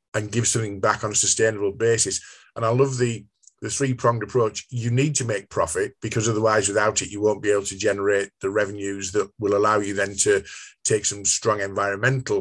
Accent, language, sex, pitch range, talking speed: British, English, male, 100-120 Hz, 205 wpm